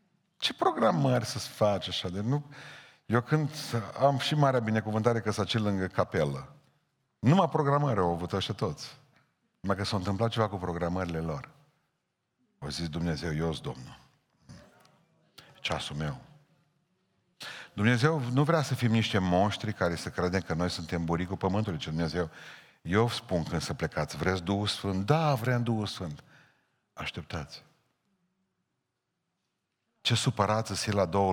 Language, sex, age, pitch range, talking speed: Romanian, male, 50-69, 80-125 Hz, 145 wpm